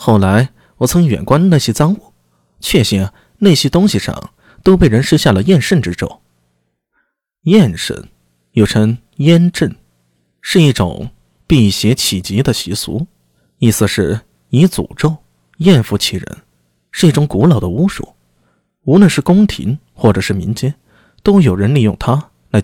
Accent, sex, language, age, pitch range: native, male, Chinese, 20-39, 90-155 Hz